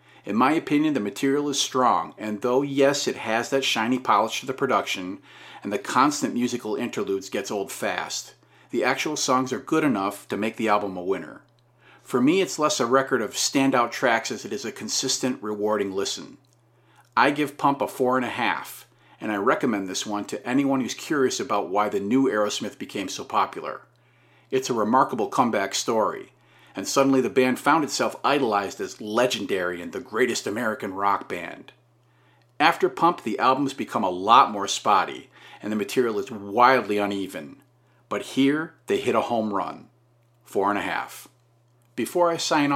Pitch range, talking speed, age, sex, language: 110-135 Hz, 175 wpm, 40-59, male, English